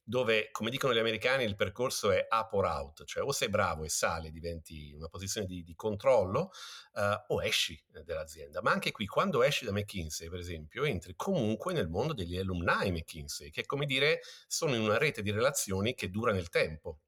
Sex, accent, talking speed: male, native, 200 wpm